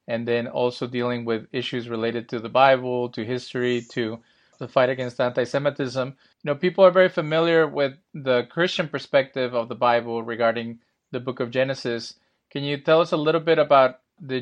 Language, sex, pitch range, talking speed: English, male, 130-150 Hz, 185 wpm